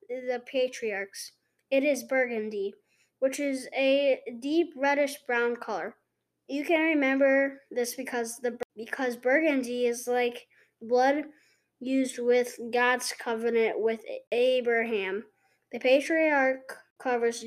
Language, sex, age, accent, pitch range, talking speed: English, female, 20-39, American, 235-275 Hz, 110 wpm